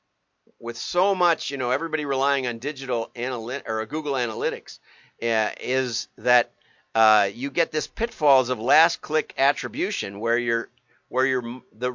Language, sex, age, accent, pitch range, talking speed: English, male, 50-69, American, 115-145 Hz, 160 wpm